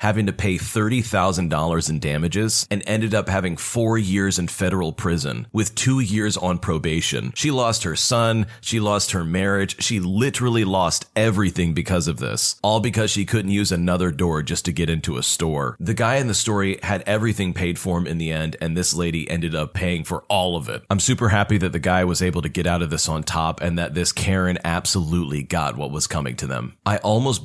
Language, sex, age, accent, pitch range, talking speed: English, male, 30-49, American, 85-110 Hz, 215 wpm